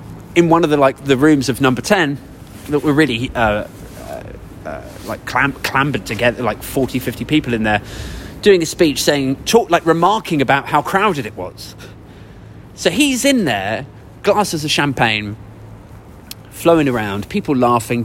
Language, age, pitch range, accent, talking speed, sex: English, 20-39, 100-145 Hz, British, 165 wpm, male